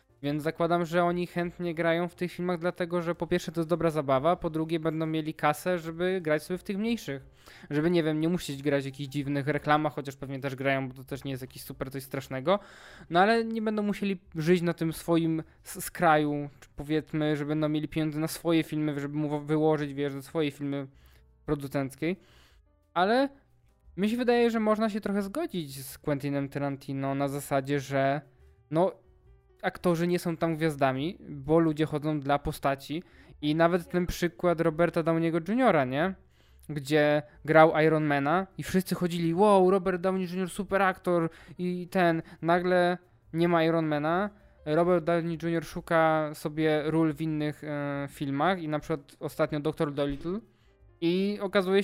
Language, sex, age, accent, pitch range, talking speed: Polish, male, 20-39, native, 145-175 Hz, 170 wpm